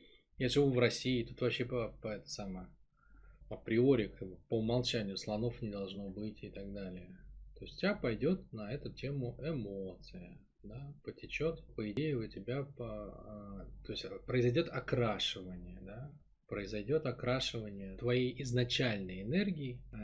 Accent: native